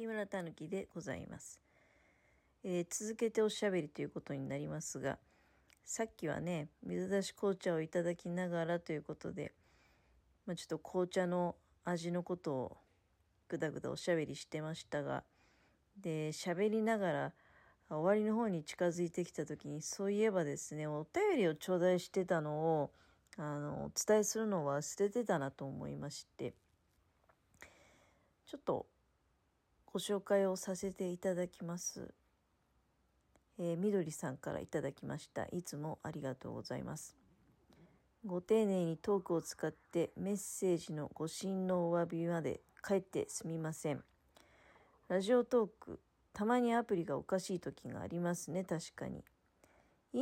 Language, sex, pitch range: Japanese, female, 155-200 Hz